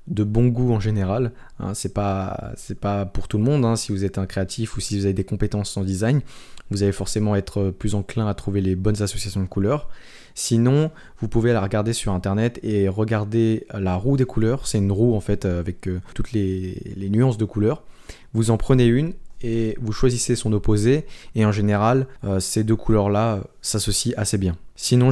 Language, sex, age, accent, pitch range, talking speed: French, male, 20-39, French, 100-115 Hz, 210 wpm